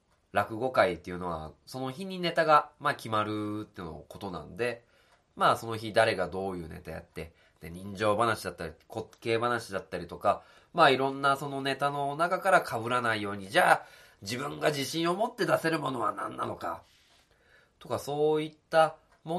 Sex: male